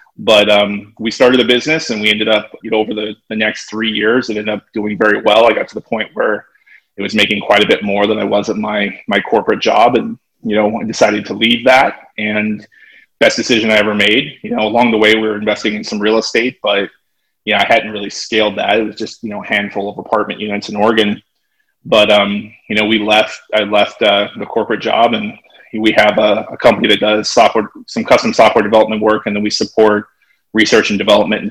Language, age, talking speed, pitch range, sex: English, 20-39, 240 wpm, 105-110 Hz, male